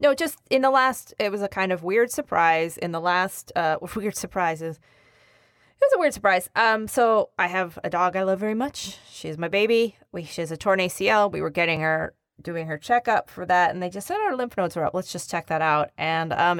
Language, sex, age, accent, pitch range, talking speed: English, female, 20-39, American, 170-215 Hz, 245 wpm